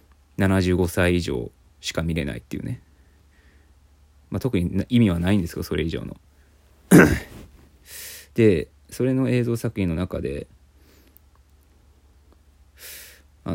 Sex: male